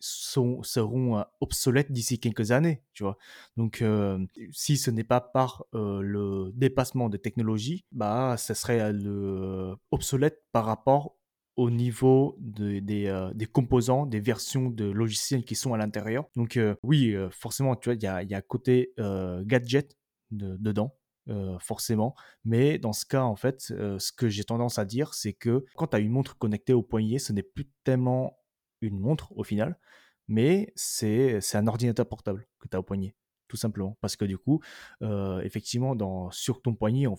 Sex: male